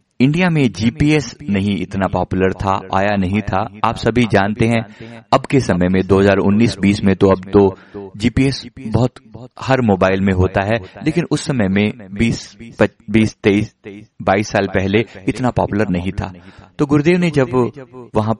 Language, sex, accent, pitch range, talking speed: Hindi, male, native, 95-120 Hz, 155 wpm